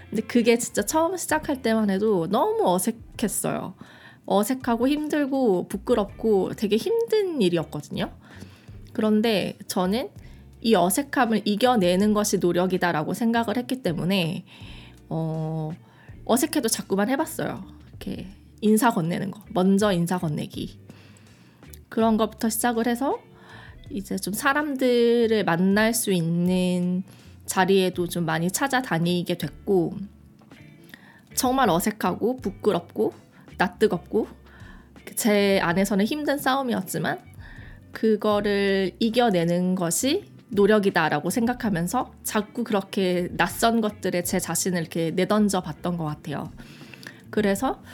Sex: female